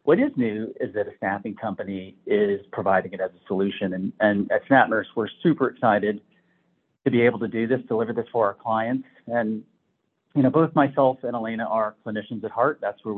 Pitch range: 110-145 Hz